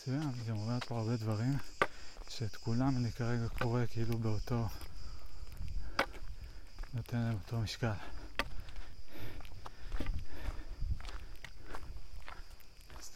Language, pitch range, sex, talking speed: Hebrew, 100-115 Hz, male, 80 wpm